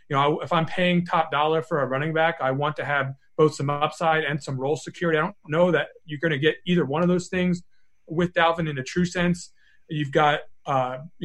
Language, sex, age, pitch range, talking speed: English, male, 30-49, 150-170 Hz, 240 wpm